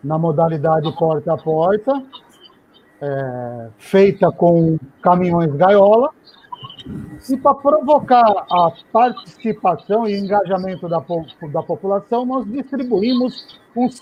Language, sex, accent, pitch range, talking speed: Portuguese, male, Brazilian, 180-245 Hz, 100 wpm